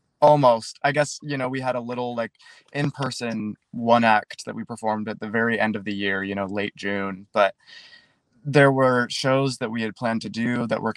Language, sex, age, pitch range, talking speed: English, male, 20-39, 105-130 Hz, 215 wpm